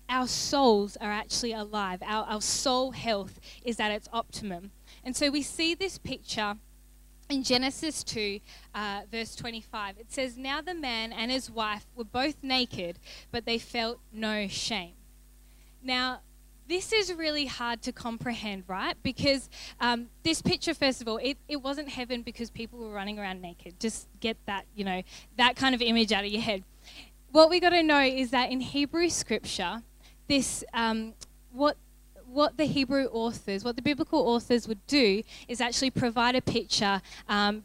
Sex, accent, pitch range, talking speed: female, Australian, 215-260 Hz, 170 wpm